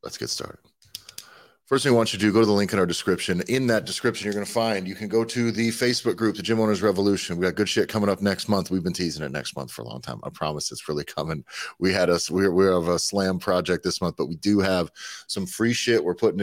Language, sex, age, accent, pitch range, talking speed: English, male, 30-49, American, 80-105 Hz, 285 wpm